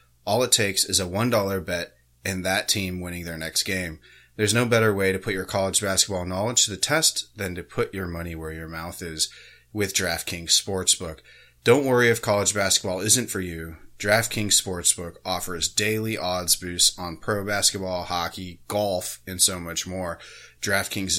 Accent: American